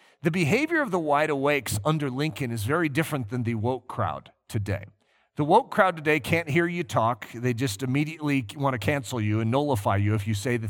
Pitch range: 110-160 Hz